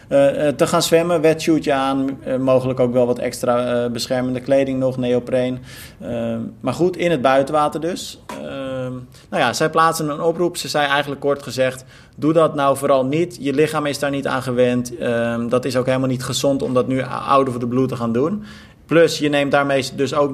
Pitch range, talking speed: 120-145 Hz, 210 wpm